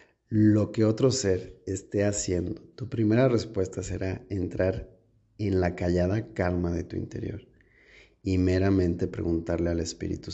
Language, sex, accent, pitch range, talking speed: Spanish, male, Mexican, 80-105 Hz, 135 wpm